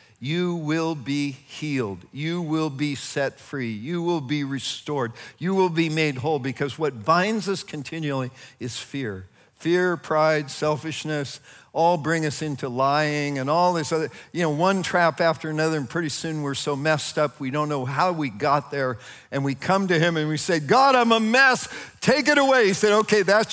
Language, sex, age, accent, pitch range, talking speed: English, male, 50-69, American, 140-190 Hz, 195 wpm